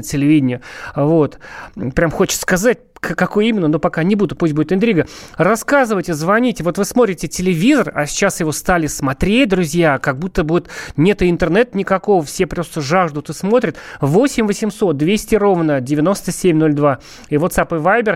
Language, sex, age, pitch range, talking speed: Russian, male, 30-49, 165-230 Hz, 150 wpm